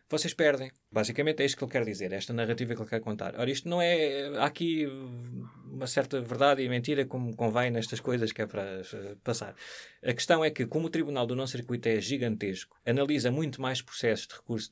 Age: 20-39